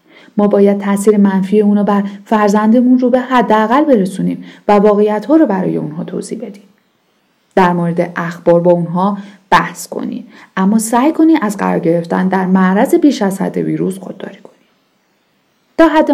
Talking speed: 155 wpm